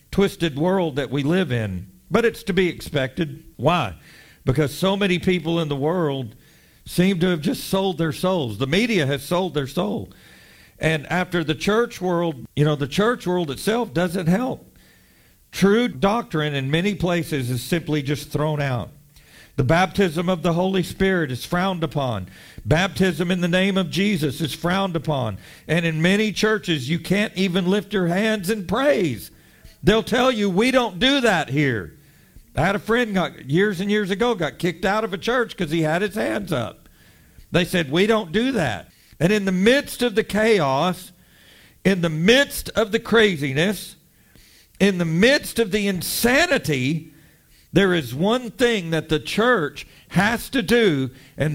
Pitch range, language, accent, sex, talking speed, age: 155-205 Hz, English, American, male, 175 wpm, 50-69